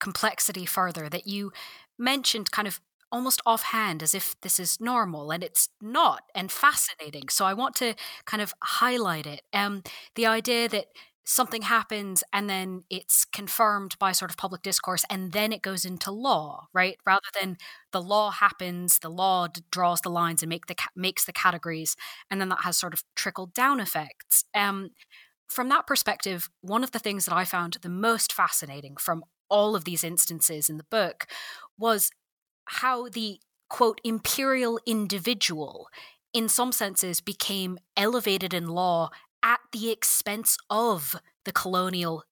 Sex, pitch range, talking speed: female, 180-230 Hz, 165 wpm